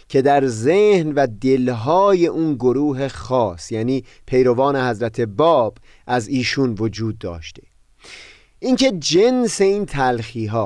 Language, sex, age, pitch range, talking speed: Persian, male, 30-49, 110-160 Hz, 115 wpm